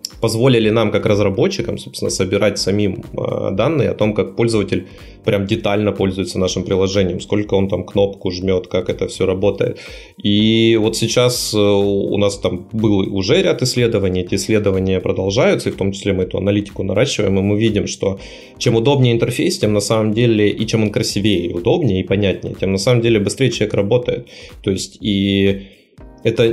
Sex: male